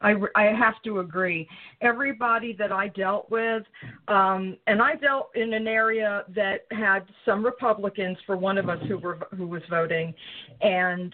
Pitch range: 180-220 Hz